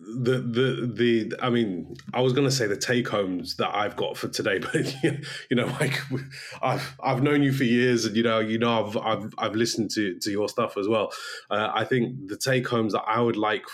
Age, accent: 20-39, British